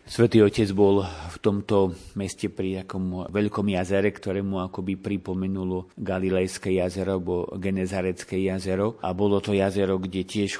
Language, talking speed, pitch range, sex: Slovak, 130 wpm, 90-100 Hz, male